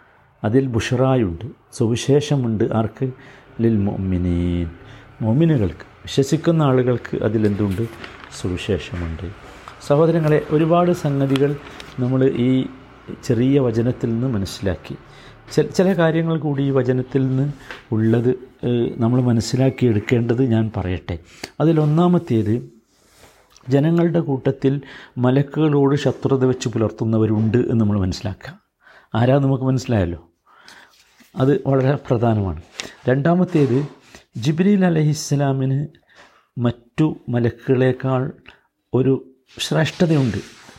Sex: male